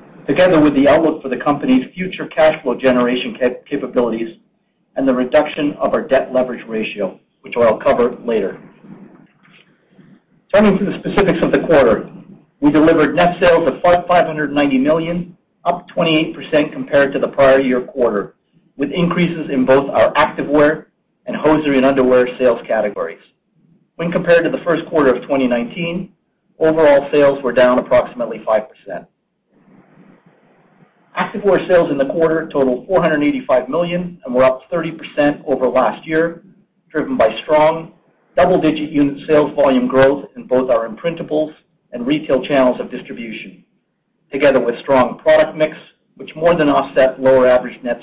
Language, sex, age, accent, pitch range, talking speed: English, male, 50-69, American, 135-175 Hz, 145 wpm